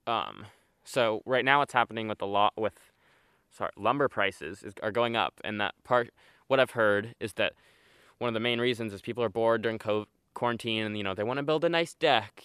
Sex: male